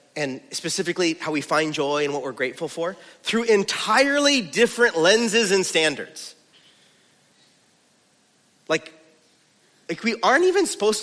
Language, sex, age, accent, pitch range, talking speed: English, male, 30-49, American, 165-260 Hz, 125 wpm